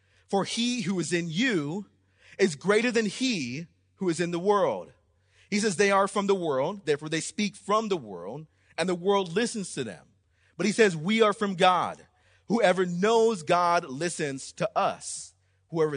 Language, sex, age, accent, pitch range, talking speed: English, male, 30-49, American, 135-185 Hz, 180 wpm